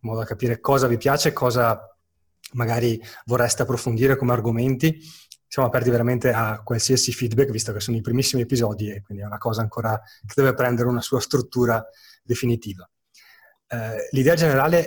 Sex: male